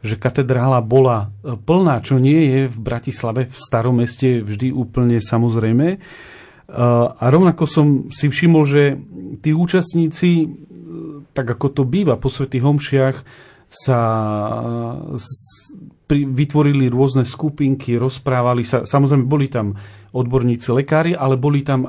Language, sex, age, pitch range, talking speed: Slovak, male, 40-59, 115-145 Hz, 120 wpm